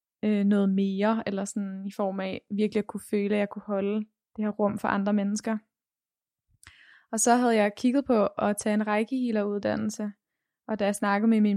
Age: 20-39